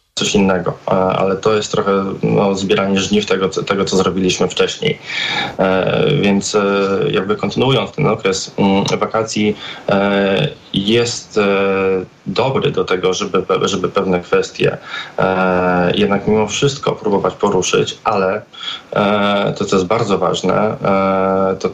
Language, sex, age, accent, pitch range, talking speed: Polish, male, 20-39, native, 95-105 Hz, 135 wpm